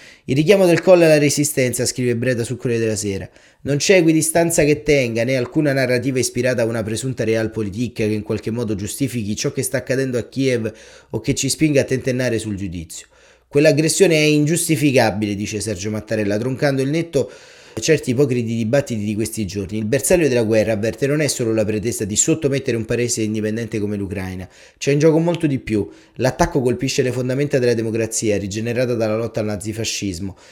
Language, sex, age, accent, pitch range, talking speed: Italian, male, 30-49, native, 110-130 Hz, 185 wpm